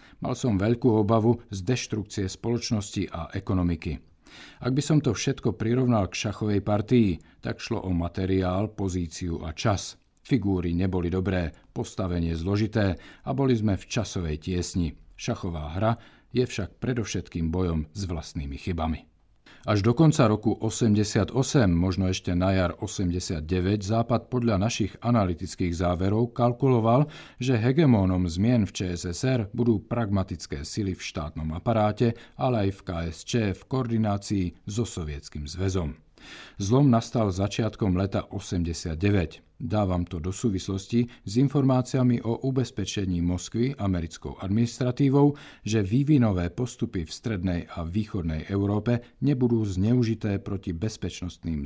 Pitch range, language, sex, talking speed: 90-120 Hz, Czech, male, 125 wpm